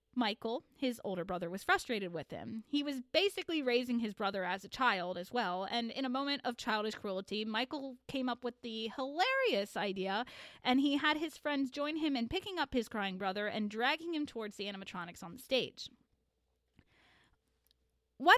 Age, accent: 20-39, American